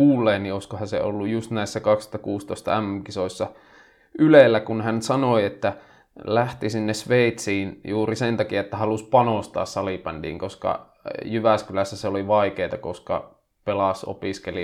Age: 20-39